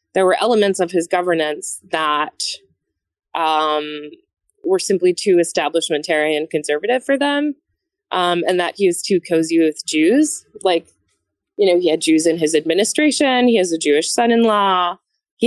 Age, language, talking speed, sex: 20-39, English, 155 wpm, female